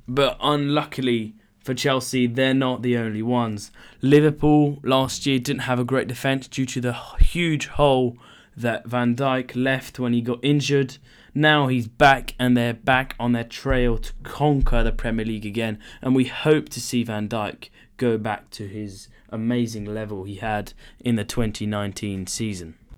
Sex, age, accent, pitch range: male, 20-39, British, 115-135 Hz